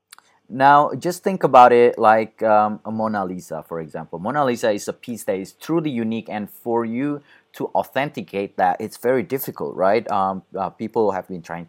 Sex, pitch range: male, 95-125 Hz